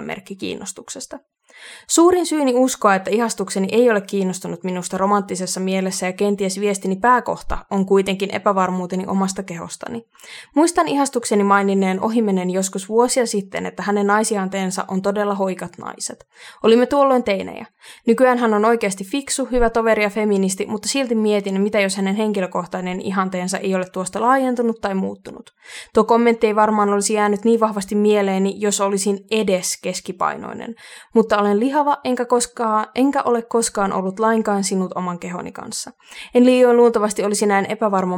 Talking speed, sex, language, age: 150 wpm, female, Finnish, 20-39